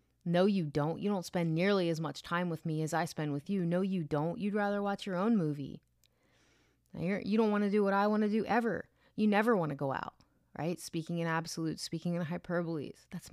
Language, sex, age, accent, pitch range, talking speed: English, female, 30-49, American, 170-210 Hz, 230 wpm